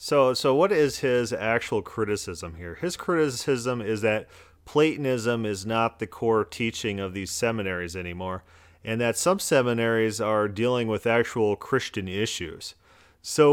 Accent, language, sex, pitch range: American, English, male, 105-140 Hz